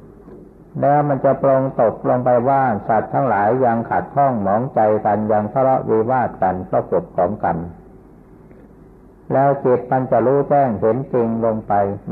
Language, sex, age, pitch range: Thai, male, 60-79, 115-150 Hz